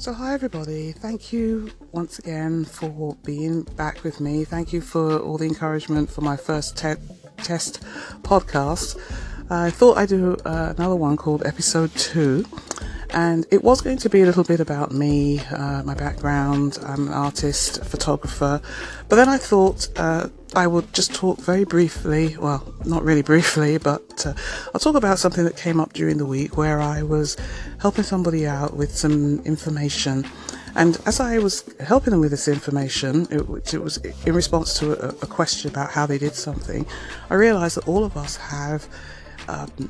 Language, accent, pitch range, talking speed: English, British, 145-175 Hz, 180 wpm